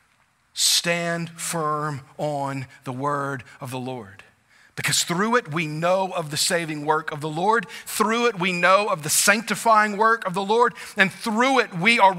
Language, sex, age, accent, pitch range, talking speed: English, male, 40-59, American, 135-185 Hz, 175 wpm